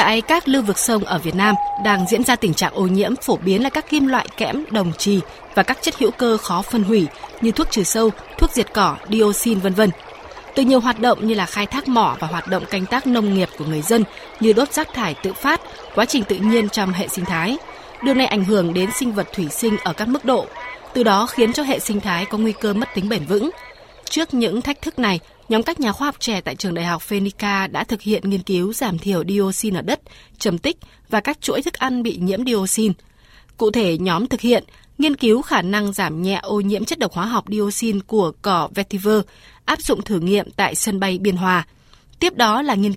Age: 20-39